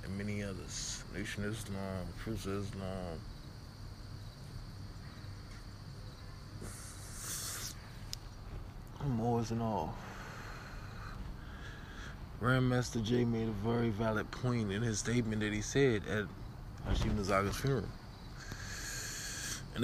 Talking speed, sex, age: 90 wpm, male, 20-39